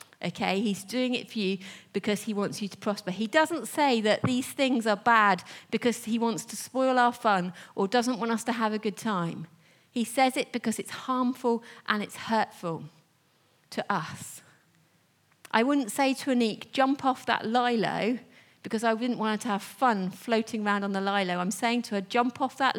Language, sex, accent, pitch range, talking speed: English, female, British, 180-240 Hz, 200 wpm